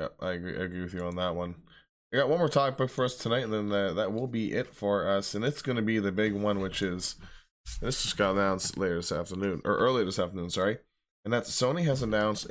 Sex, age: male, 10-29